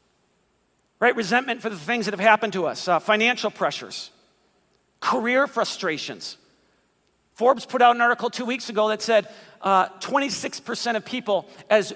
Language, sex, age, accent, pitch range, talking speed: English, male, 50-69, American, 190-230 Hz, 155 wpm